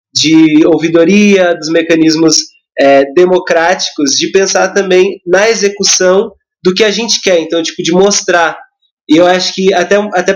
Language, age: Portuguese, 20-39